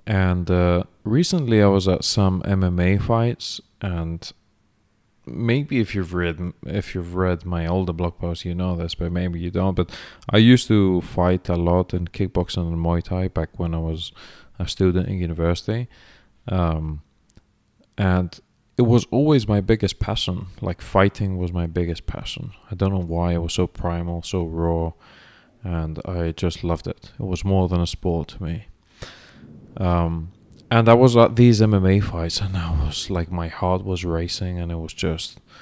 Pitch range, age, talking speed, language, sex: 85-105 Hz, 20-39, 170 wpm, English, male